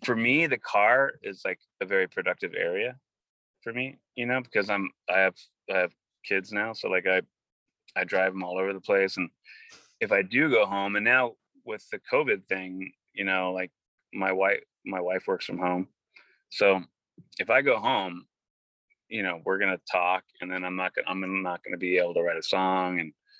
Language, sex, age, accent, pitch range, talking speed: English, male, 30-49, American, 95-125 Hz, 205 wpm